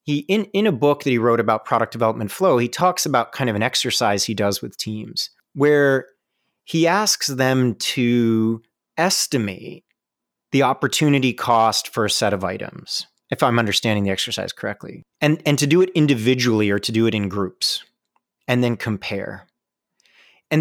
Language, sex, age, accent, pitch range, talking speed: English, male, 30-49, American, 115-145 Hz, 170 wpm